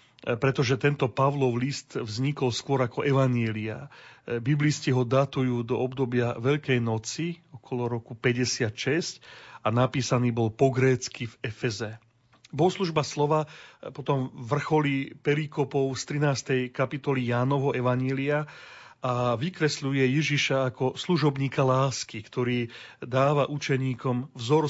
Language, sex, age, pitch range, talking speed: Slovak, male, 40-59, 125-150 Hz, 110 wpm